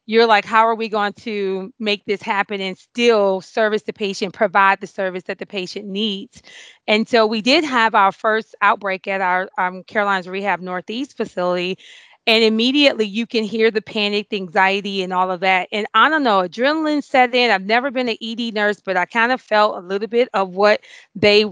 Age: 30-49